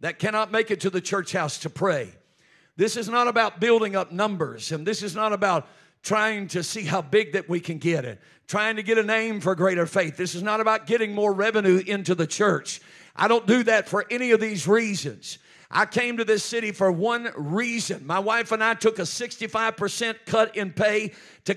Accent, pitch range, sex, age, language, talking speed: American, 205-240 Hz, male, 50-69, English, 215 wpm